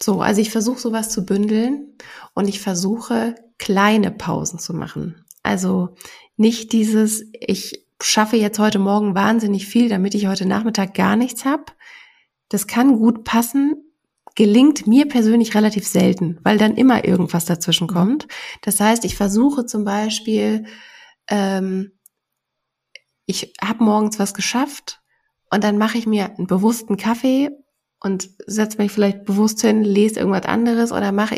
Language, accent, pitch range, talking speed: German, German, 200-245 Hz, 145 wpm